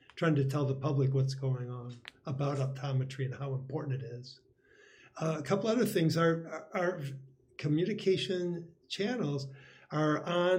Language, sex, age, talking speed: English, male, 50-69, 145 wpm